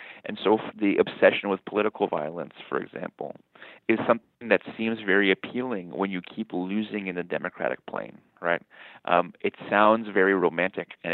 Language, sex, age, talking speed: English, male, 30-49, 160 wpm